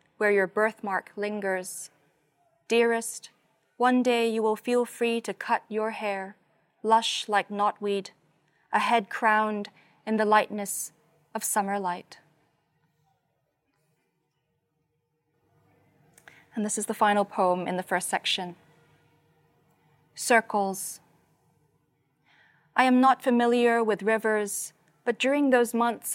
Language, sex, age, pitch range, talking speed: English, female, 20-39, 185-225 Hz, 110 wpm